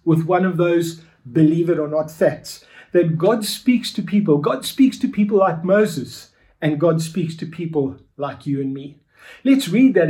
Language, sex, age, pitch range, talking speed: English, male, 50-69, 140-190 Hz, 190 wpm